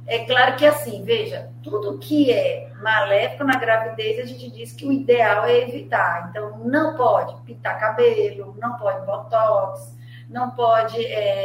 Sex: female